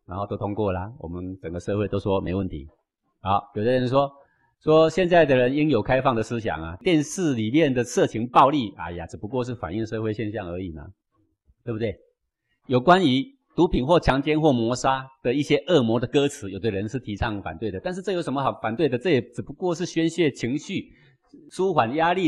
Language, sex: Chinese, male